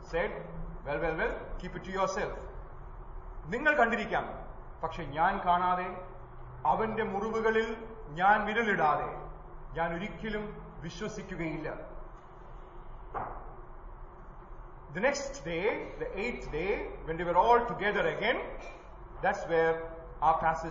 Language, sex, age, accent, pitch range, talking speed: English, male, 40-59, Indian, 150-225 Hz, 85 wpm